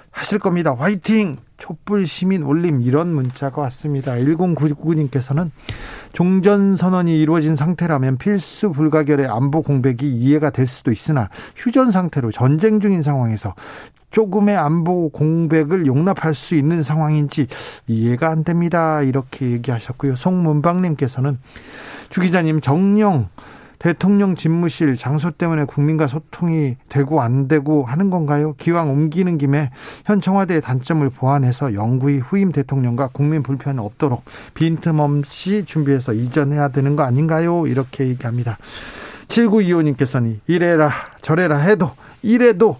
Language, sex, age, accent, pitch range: Korean, male, 40-59, native, 140-170 Hz